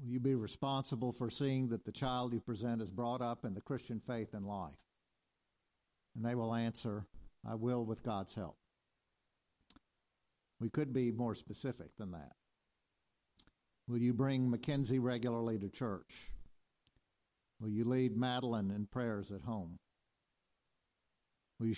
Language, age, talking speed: English, 50-69, 145 wpm